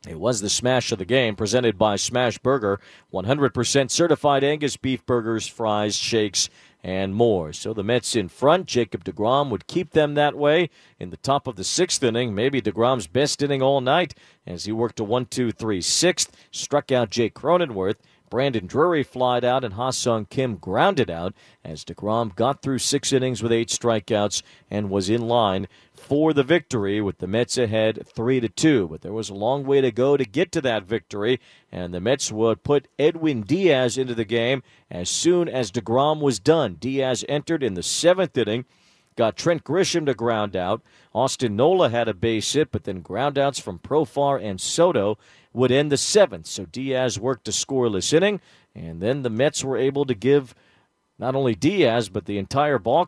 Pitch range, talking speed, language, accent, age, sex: 110-140 Hz, 190 wpm, English, American, 50-69, male